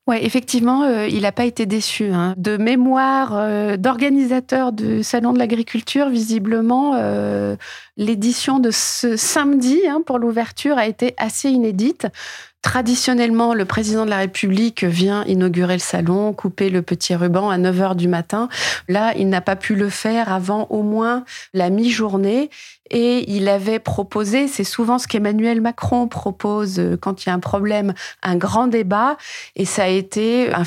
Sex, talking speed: female, 160 wpm